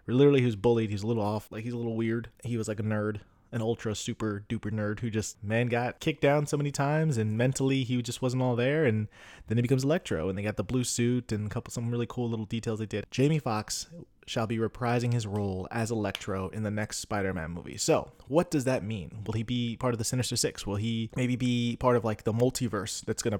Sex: male